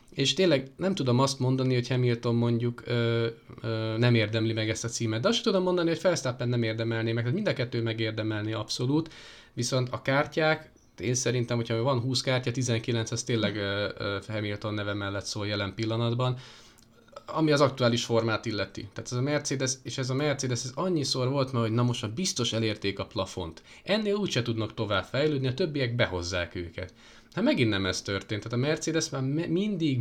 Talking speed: 195 wpm